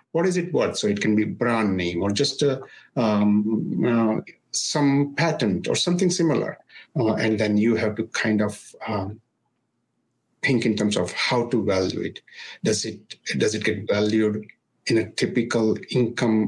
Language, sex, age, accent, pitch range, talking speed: English, male, 60-79, Indian, 110-165 Hz, 170 wpm